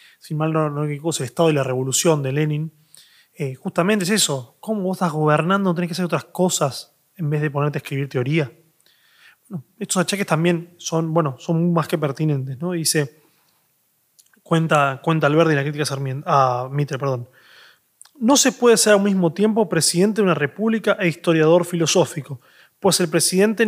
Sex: male